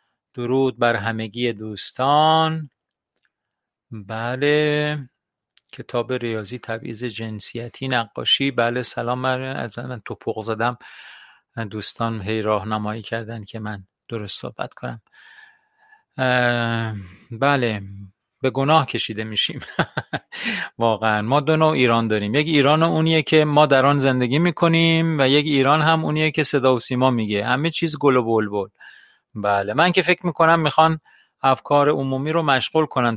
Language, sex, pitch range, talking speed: Persian, male, 115-145 Hz, 130 wpm